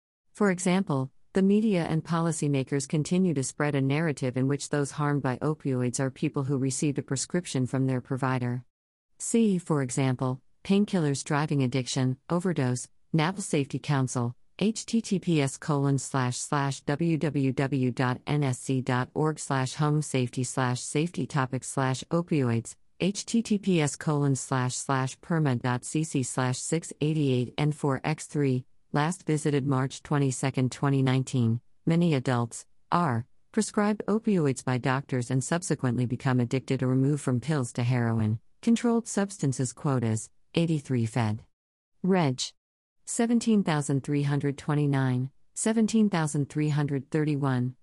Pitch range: 130-160 Hz